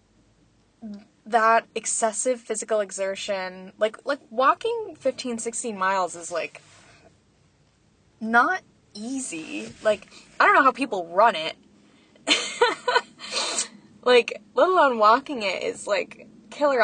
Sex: female